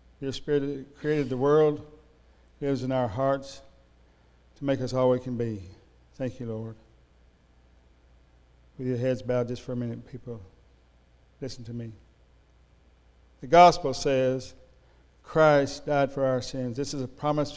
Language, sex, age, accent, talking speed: English, male, 60-79, American, 145 wpm